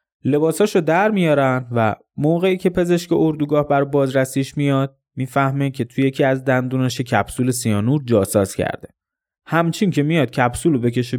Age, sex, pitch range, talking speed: 20-39, male, 115-150 Hz, 140 wpm